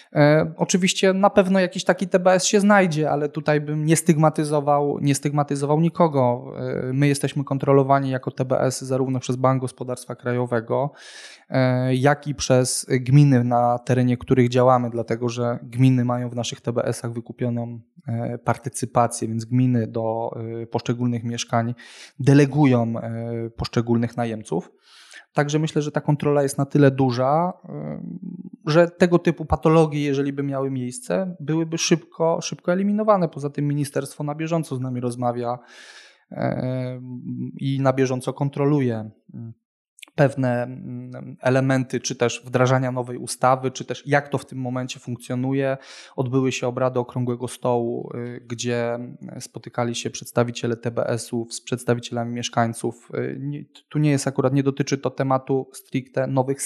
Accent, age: native, 20-39